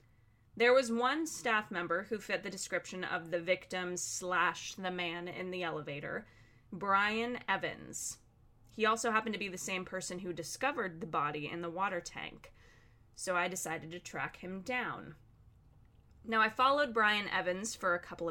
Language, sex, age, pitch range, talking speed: English, female, 20-39, 160-210 Hz, 165 wpm